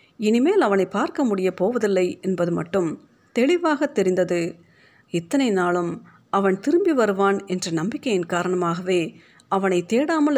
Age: 50-69